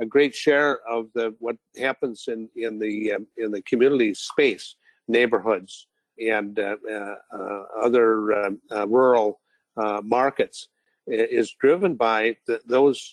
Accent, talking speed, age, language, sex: American, 140 wpm, 50-69, English, male